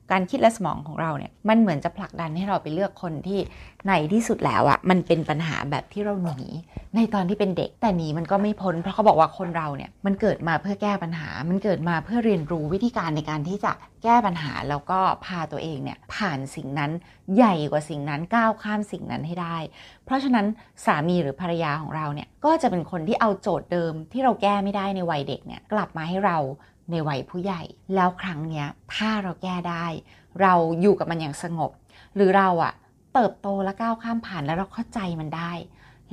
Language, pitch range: Thai, 165-220 Hz